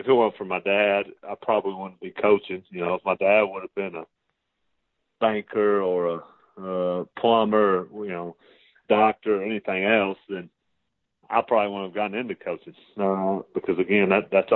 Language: English